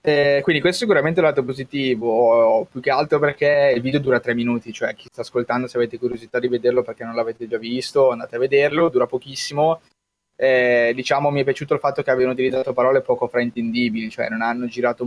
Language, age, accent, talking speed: Italian, 20-39, native, 210 wpm